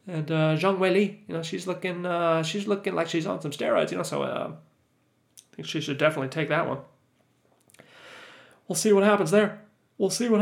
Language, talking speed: English, 205 wpm